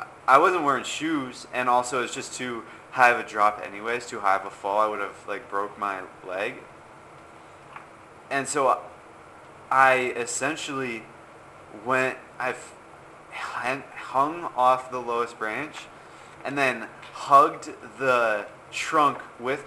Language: English